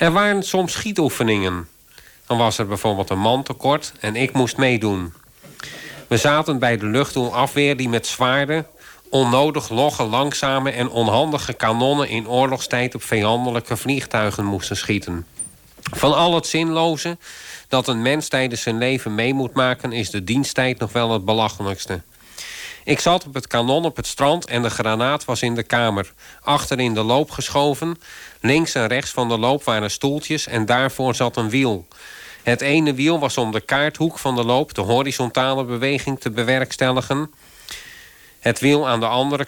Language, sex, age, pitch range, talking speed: Dutch, male, 50-69, 115-145 Hz, 165 wpm